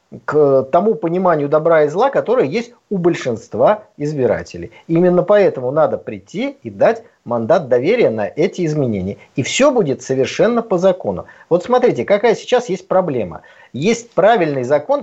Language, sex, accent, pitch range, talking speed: Russian, male, native, 170-240 Hz, 150 wpm